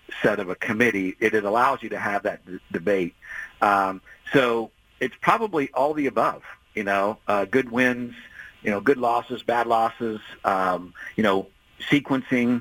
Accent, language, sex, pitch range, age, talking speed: American, English, male, 115-165 Hz, 50-69, 160 wpm